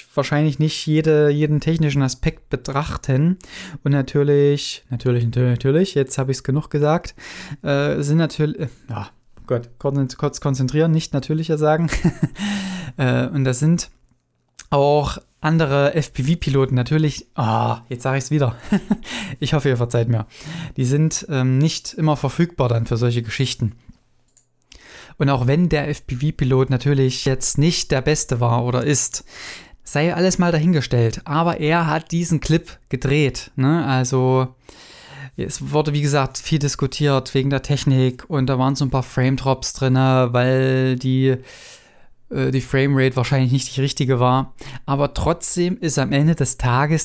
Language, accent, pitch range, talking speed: German, German, 130-155 Hz, 150 wpm